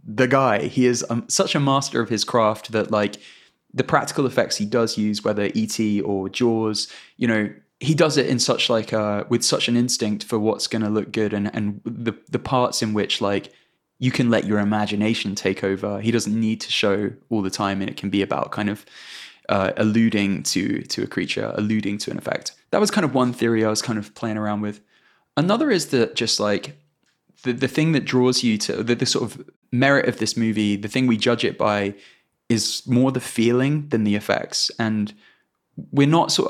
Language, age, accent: English, 20-39, British